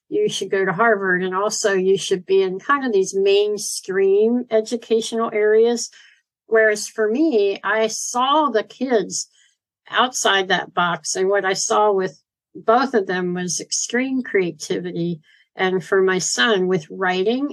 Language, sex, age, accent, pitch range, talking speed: English, female, 60-79, American, 185-225 Hz, 150 wpm